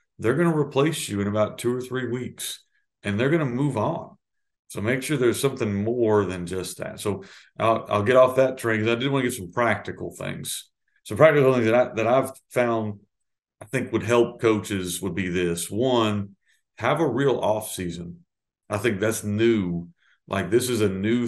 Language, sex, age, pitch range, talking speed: English, male, 50-69, 100-120 Hz, 205 wpm